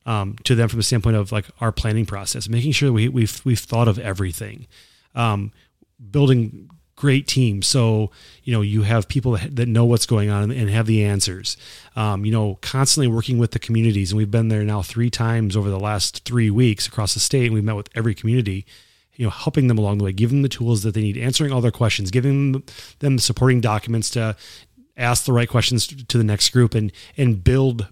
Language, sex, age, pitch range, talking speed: English, male, 30-49, 105-125 Hz, 215 wpm